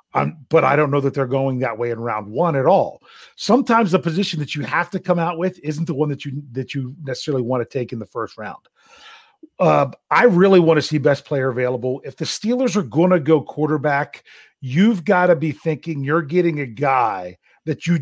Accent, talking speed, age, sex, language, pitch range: American, 225 wpm, 40-59, male, English, 135-180 Hz